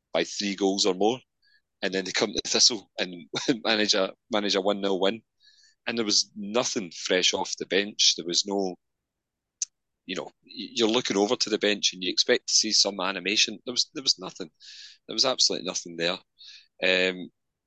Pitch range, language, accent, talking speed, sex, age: 95-110 Hz, English, British, 185 wpm, male, 30-49